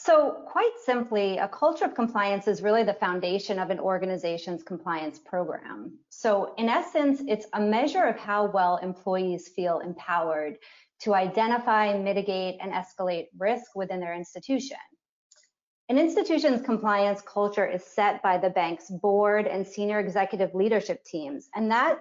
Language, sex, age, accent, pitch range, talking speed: English, female, 30-49, American, 180-215 Hz, 145 wpm